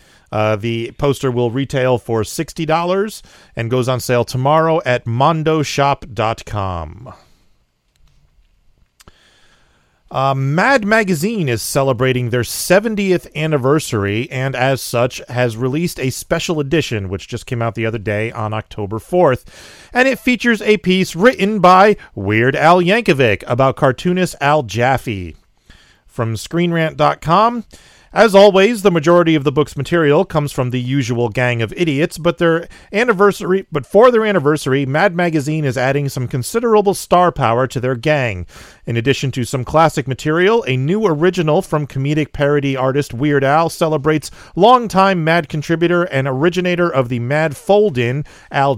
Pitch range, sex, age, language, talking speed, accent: 125-175 Hz, male, 40-59, English, 140 wpm, American